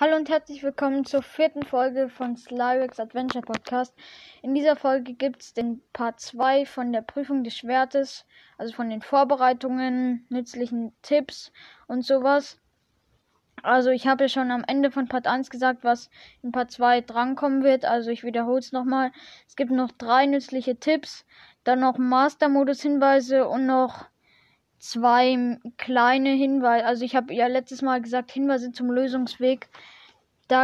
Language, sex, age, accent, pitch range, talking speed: German, female, 10-29, German, 240-270 Hz, 155 wpm